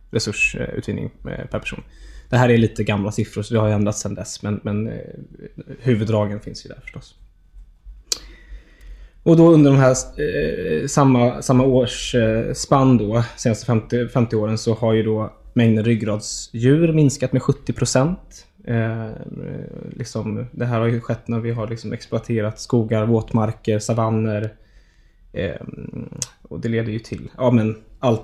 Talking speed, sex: 150 wpm, male